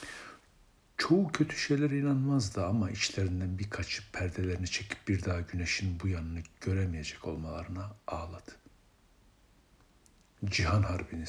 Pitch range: 90-105 Hz